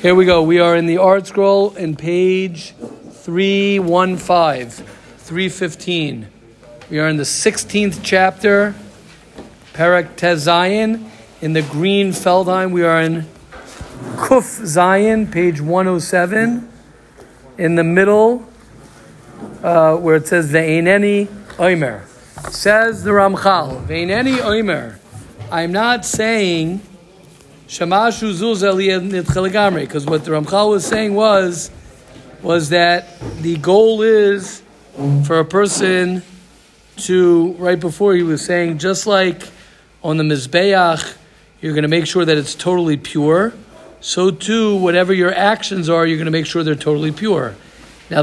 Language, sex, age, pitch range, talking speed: English, male, 50-69, 160-200 Hz, 125 wpm